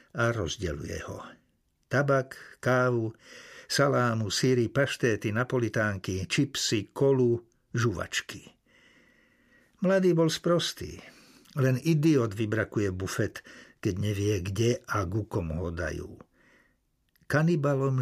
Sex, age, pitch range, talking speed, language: male, 60-79, 105-140 Hz, 90 wpm, Slovak